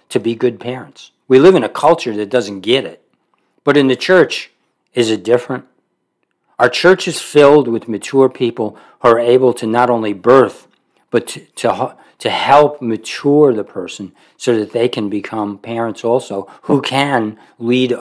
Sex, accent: male, American